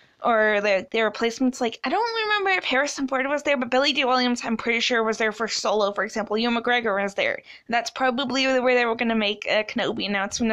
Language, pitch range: English, 225-275 Hz